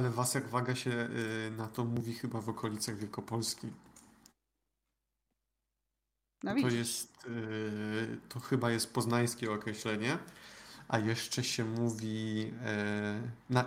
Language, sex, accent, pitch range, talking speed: Polish, male, native, 110-125 Hz, 105 wpm